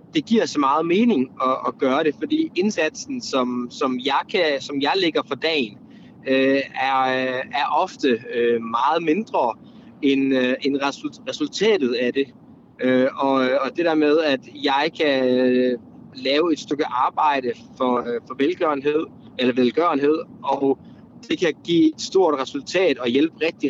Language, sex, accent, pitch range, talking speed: Danish, male, native, 130-175 Hz, 140 wpm